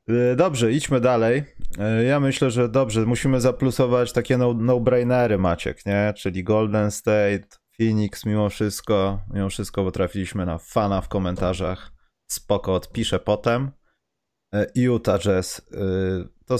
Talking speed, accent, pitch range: 125 wpm, native, 105-145 Hz